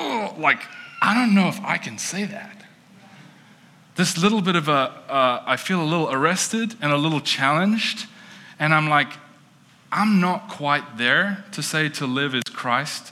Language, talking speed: English, 170 wpm